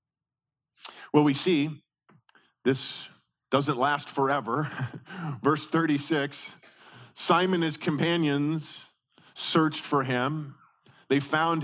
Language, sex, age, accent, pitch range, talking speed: English, male, 40-59, American, 145-190 Hz, 95 wpm